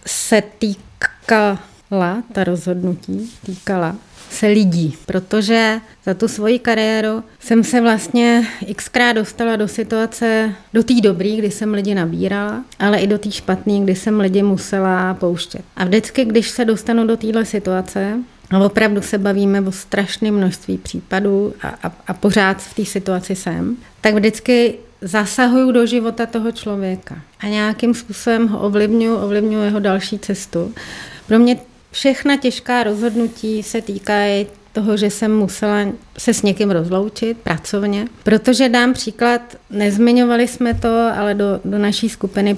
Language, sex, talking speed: Czech, female, 145 wpm